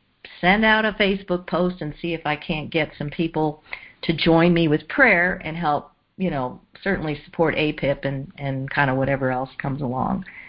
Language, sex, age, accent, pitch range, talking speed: English, female, 50-69, American, 155-190 Hz, 190 wpm